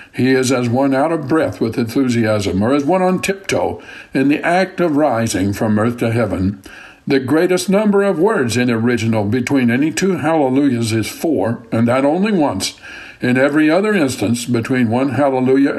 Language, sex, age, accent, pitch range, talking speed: English, male, 60-79, American, 120-160 Hz, 180 wpm